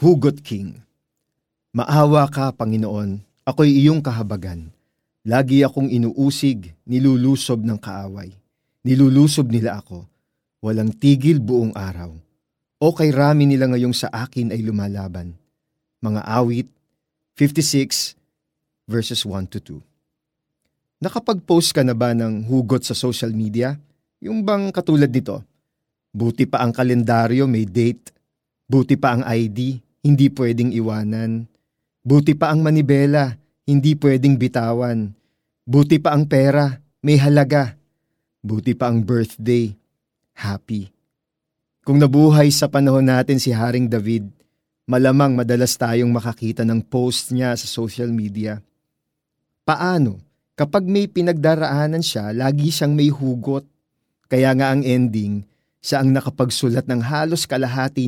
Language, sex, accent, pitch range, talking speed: Filipino, male, native, 115-145 Hz, 120 wpm